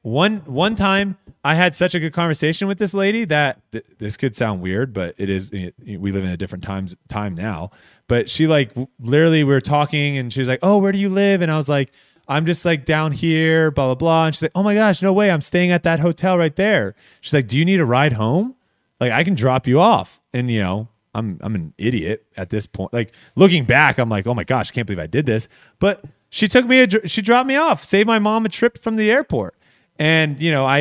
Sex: male